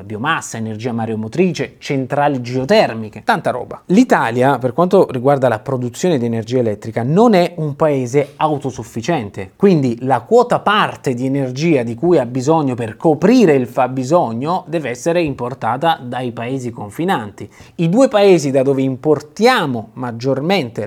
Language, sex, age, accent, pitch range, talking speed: Italian, male, 20-39, native, 120-185 Hz, 140 wpm